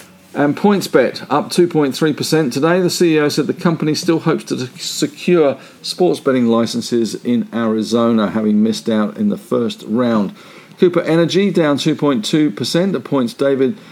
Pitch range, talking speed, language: 120-160 Hz, 140 wpm, English